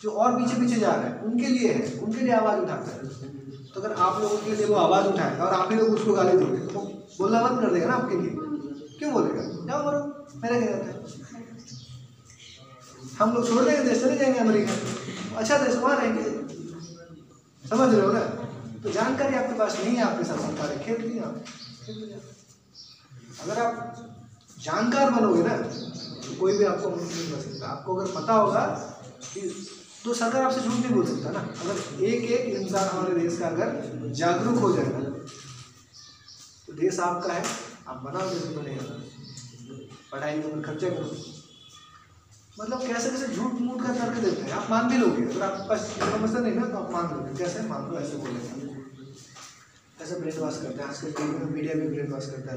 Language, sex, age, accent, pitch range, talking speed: Hindi, male, 30-49, native, 135-220 Hz, 180 wpm